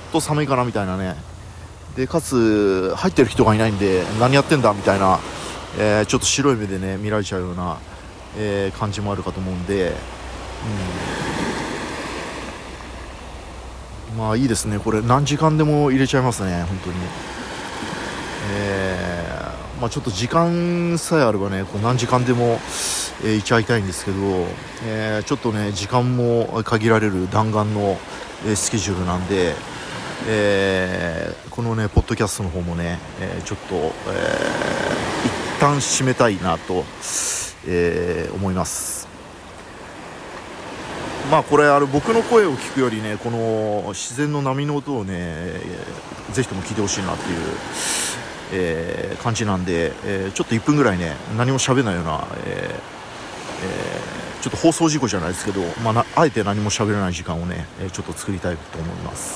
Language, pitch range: Japanese, 95-120 Hz